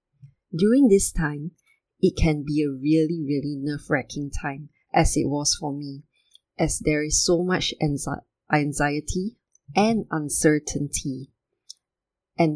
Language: English